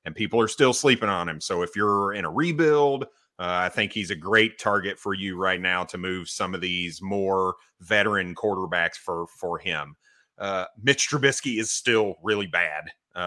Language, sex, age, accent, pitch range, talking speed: English, male, 30-49, American, 90-120 Hz, 195 wpm